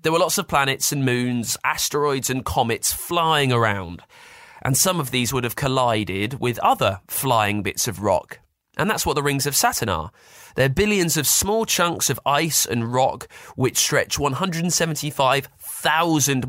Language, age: English, 20-39